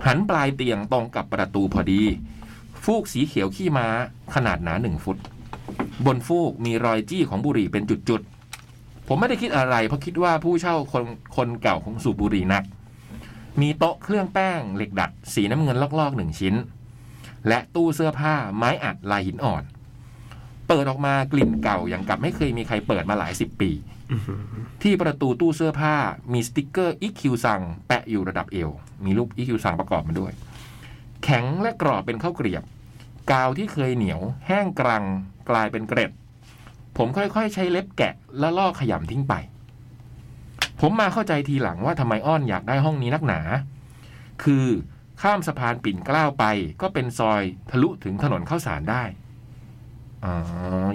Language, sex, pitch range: Thai, male, 110-145 Hz